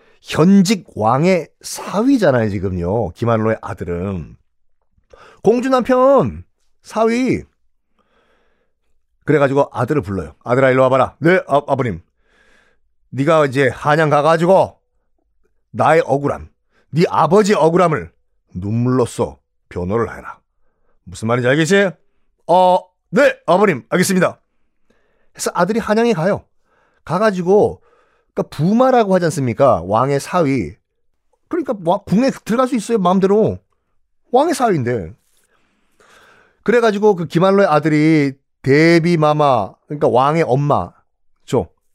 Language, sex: Korean, male